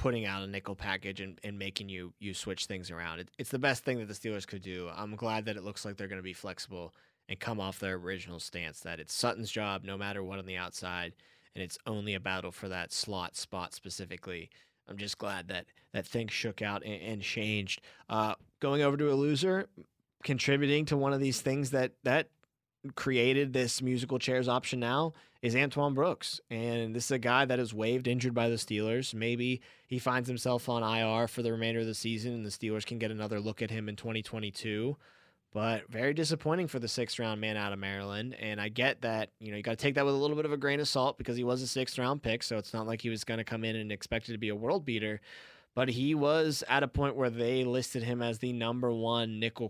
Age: 20-39